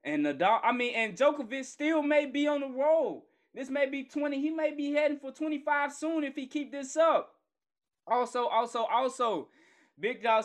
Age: 20-39